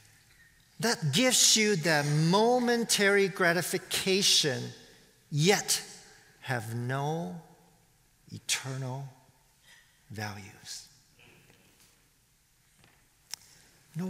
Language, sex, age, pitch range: English, male, 50-69, 135-165 Hz